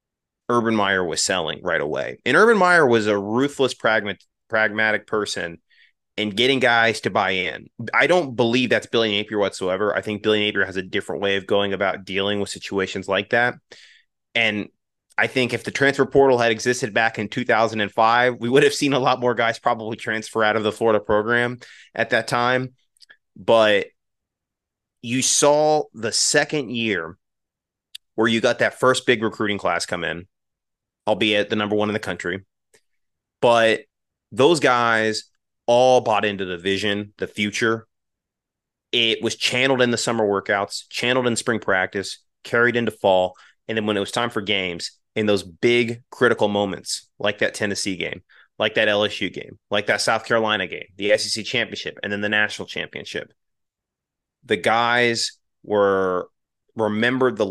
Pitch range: 100-120 Hz